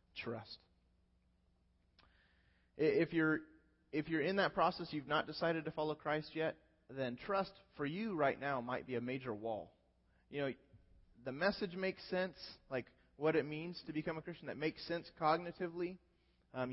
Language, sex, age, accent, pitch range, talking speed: English, male, 30-49, American, 115-155 Hz, 160 wpm